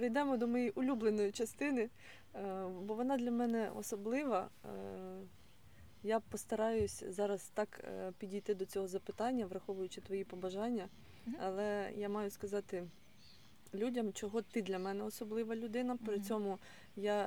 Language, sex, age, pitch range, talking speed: Ukrainian, female, 20-39, 190-225 Hz, 120 wpm